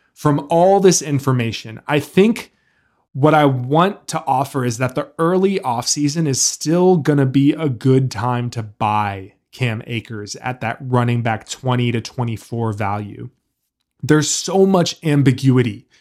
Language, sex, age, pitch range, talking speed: English, male, 20-39, 125-150 Hz, 145 wpm